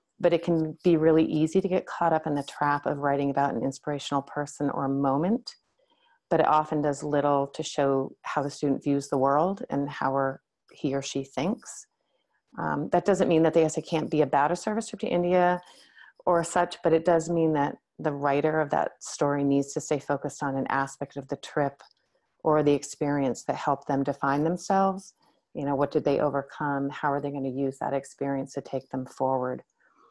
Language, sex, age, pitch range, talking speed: English, female, 40-59, 135-160 Hz, 205 wpm